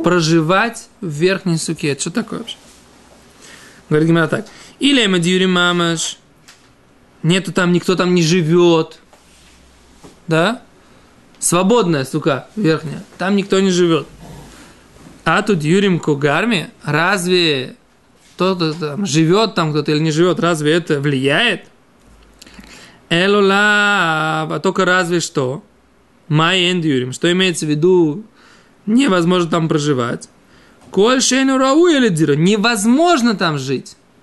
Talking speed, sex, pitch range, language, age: 100 wpm, male, 160-220 Hz, Russian, 20-39